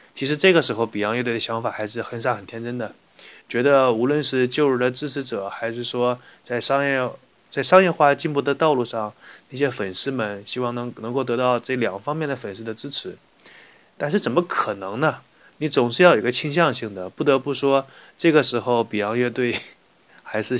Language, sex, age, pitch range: Chinese, male, 20-39, 115-140 Hz